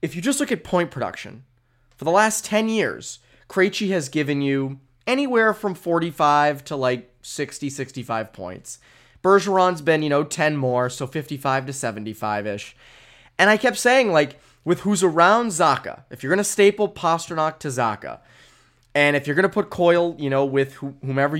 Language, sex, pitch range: English, male, 135-185 Hz